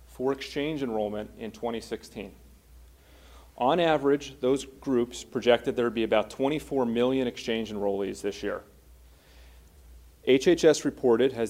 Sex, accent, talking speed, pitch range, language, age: male, American, 120 wpm, 100-130 Hz, English, 30-49